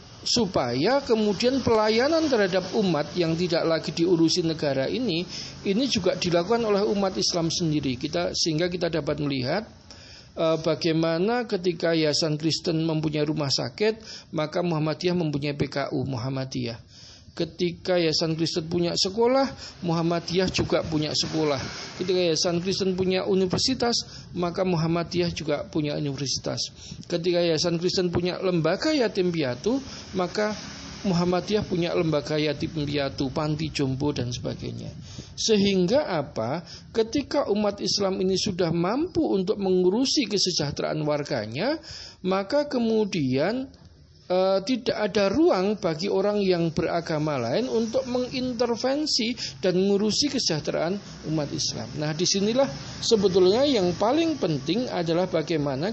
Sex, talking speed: male, 115 wpm